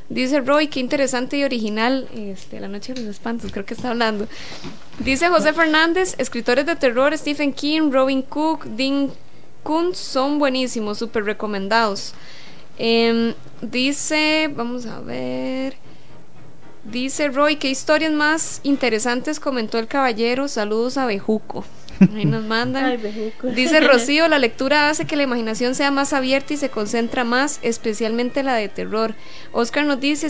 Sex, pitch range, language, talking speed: female, 230-285 Hz, Spanish, 145 wpm